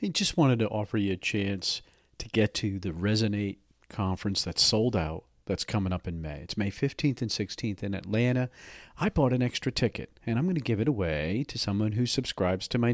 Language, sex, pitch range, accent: English, male, 105-130 Hz, American